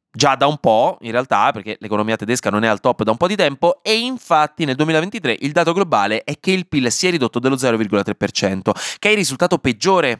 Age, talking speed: 20-39, 230 wpm